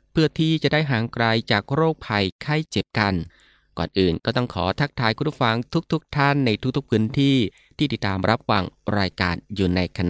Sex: male